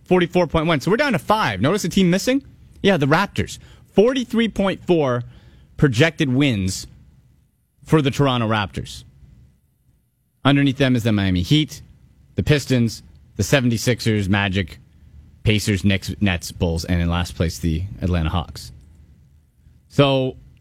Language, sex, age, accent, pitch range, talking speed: English, male, 30-49, American, 95-155 Hz, 120 wpm